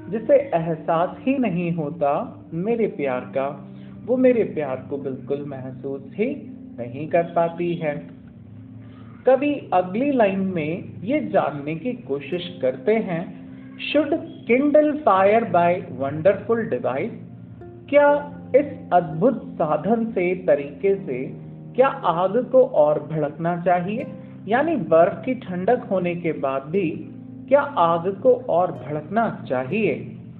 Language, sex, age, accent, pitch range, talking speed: Hindi, male, 50-69, native, 145-230 Hz, 125 wpm